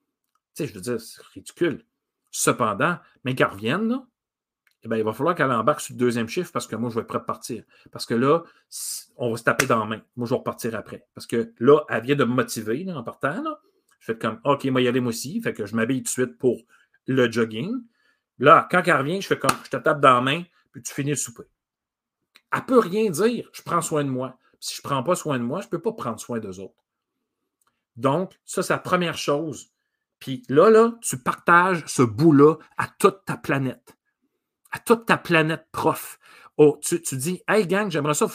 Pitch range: 125-180 Hz